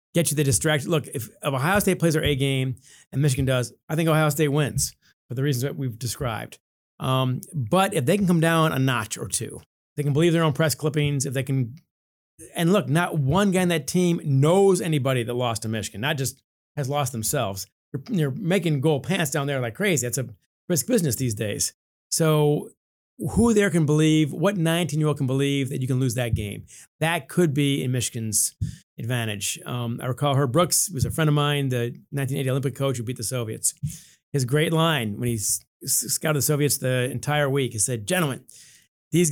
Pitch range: 125-160 Hz